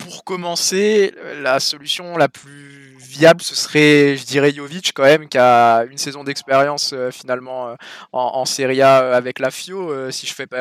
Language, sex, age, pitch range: French, male, 20-39, 130-160 Hz